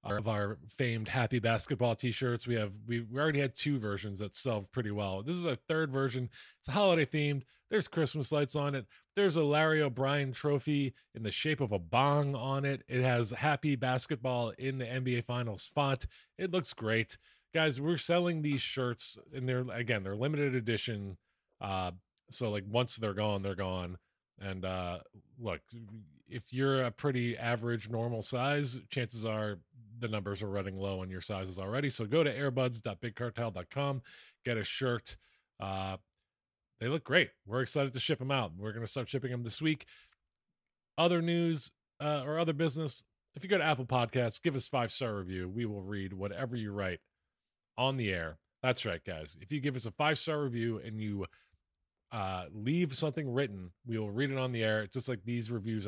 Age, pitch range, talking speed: 20-39, 105-140 Hz, 190 wpm